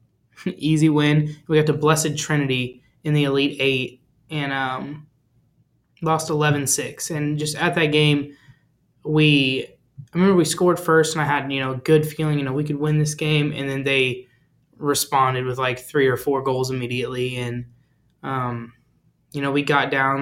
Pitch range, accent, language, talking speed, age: 130-150 Hz, American, English, 175 wpm, 20-39